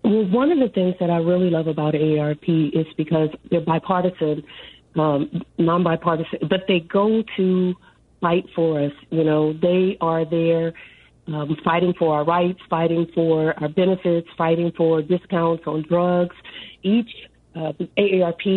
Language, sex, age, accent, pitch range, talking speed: English, female, 40-59, American, 160-180 Hz, 150 wpm